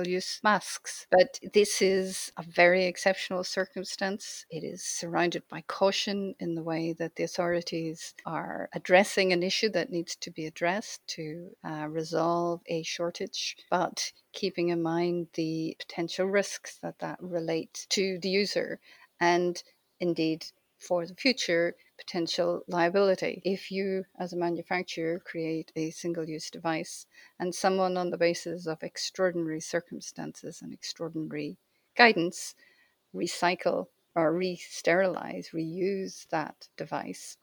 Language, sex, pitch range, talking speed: English, female, 165-190 Hz, 130 wpm